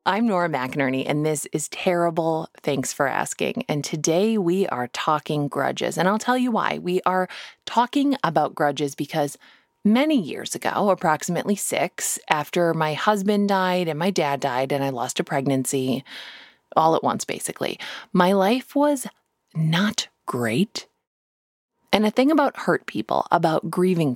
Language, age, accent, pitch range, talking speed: English, 20-39, American, 150-210 Hz, 155 wpm